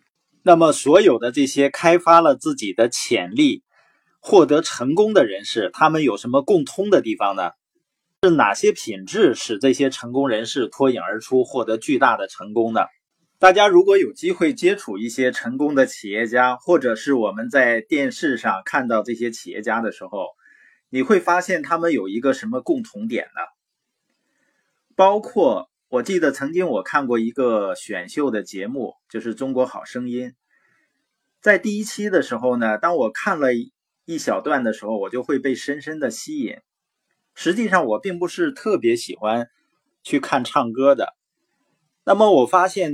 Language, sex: Chinese, male